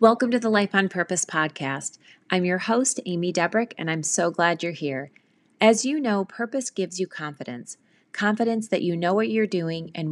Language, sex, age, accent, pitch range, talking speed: English, female, 30-49, American, 165-210 Hz, 195 wpm